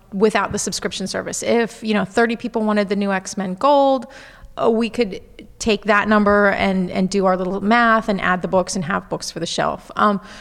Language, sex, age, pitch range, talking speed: English, female, 30-49, 195-230 Hz, 215 wpm